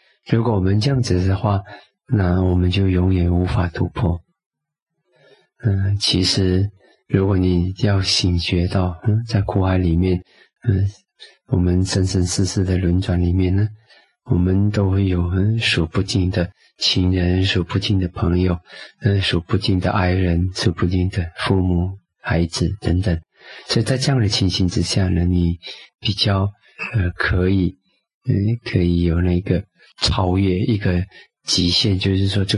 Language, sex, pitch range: Chinese, male, 90-115 Hz